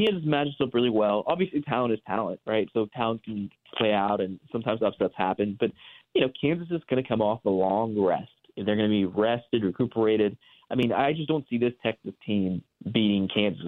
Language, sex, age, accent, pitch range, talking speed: English, male, 30-49, American, 100-125 Hz, 210 wpm